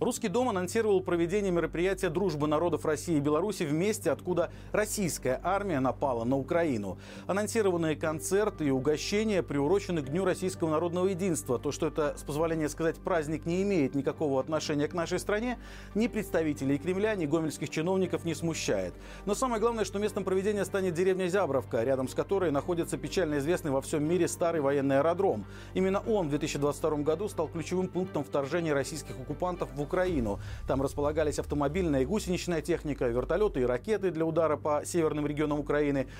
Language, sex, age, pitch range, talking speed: Russian, male, 40-59, 140-185 Hz, 165 wpm